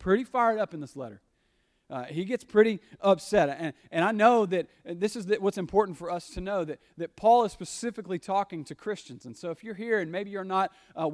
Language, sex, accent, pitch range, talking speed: English, male, American, 140-175 Hz, 230 wpm